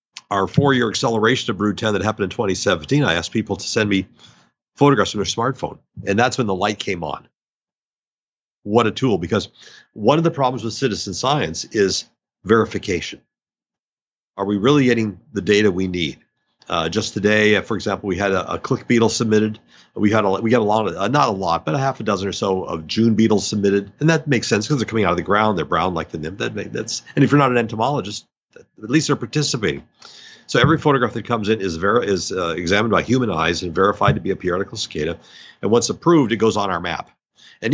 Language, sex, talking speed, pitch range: English, male, 220 wpm, 95-120 Hz